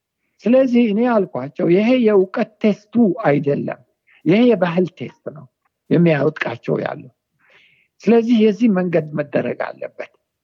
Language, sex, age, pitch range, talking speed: Amharic, male, 60-79, 165-225 Hz, 105 wpm